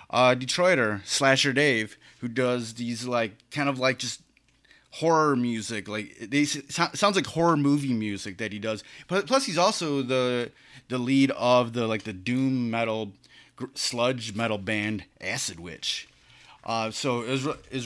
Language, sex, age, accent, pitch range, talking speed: English, male, 30-49, American, 110-145 Hz, 150 wpm